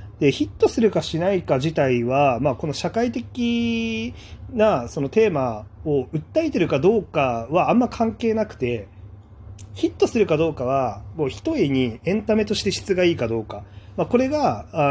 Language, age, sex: Japanese, 30-49, male